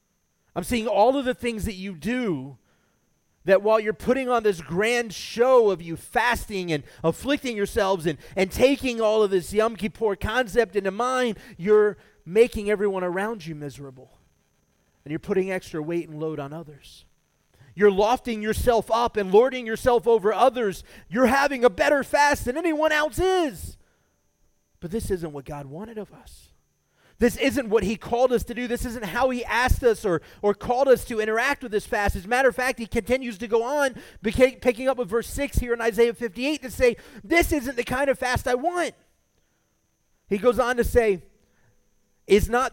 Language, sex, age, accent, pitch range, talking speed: English, male, 30-49, American, 170-245 Hz, 190 wpm